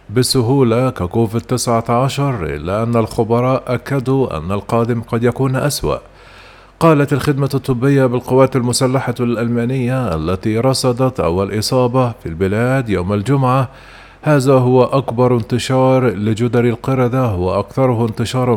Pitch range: 115-130 Hz